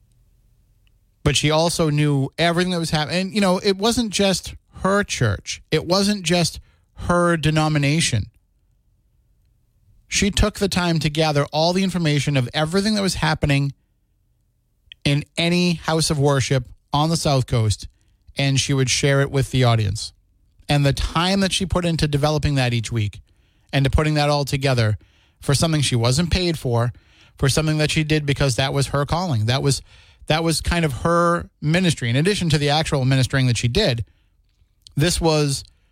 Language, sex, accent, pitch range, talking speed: English, male, American, 110-160 Hz, 175 wpm